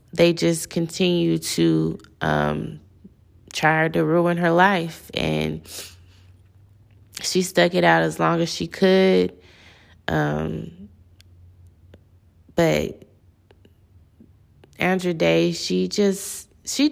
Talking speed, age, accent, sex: 90 wpm, 20-39, American, female